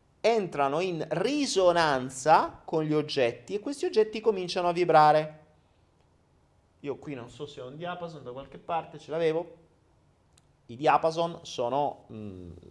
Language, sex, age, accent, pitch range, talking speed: Italian, male, 30-49, native, 130-185 Hz, 135 wpm